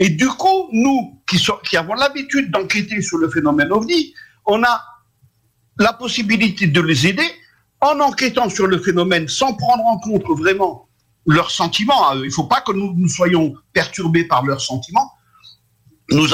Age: 60-79